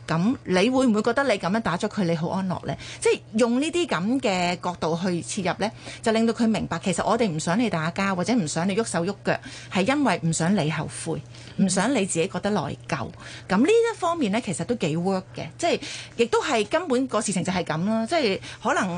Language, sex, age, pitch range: Chinese, female, 30-49, 175-235 Hz